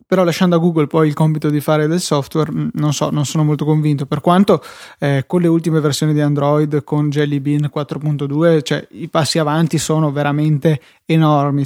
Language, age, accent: Italian, 20-39, native